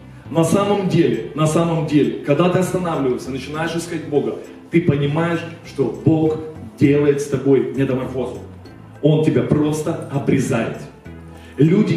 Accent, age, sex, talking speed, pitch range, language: native, 30-49, male, 125 wpm, 145-180 Hz, Russian